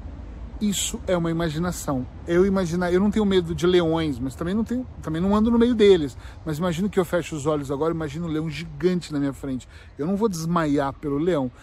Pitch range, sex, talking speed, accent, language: 150-200 Hz, male, 220 wpm, Brazilian, Portuguese